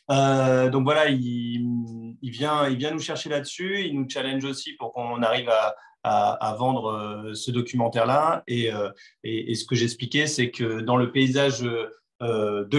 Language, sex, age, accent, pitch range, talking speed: French, male, 30-49, French, 115-135 Hz, 170 wpm